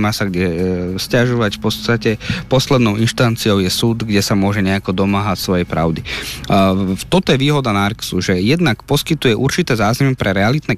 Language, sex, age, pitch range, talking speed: Slovak, male, 30-49, 105-130 Hz, 175 wpm